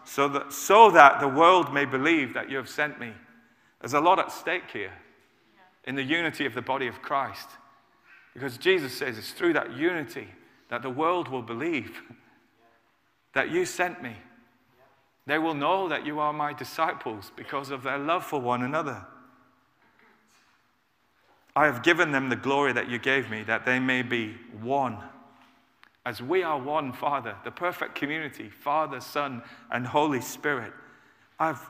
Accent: British